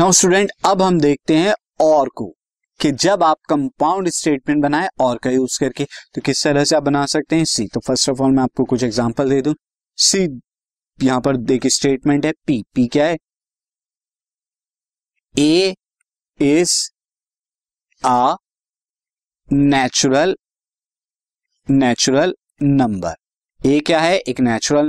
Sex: male